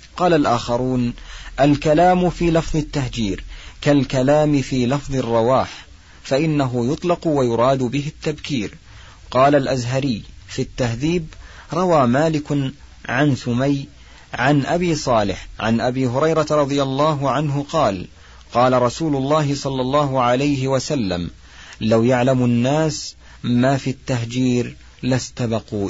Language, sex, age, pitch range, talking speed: Arabic, male, 40-59, 115-150 Hz, 110 wpm